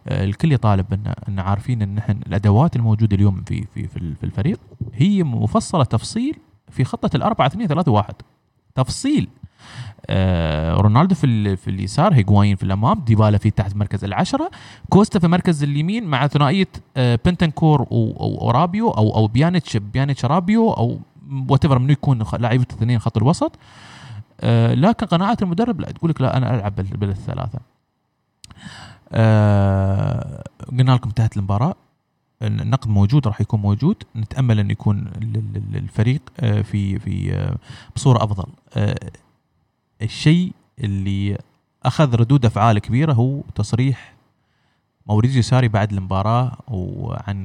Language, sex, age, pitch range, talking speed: Arabic, male, 20-39, 105-135 Hz, 120 wpm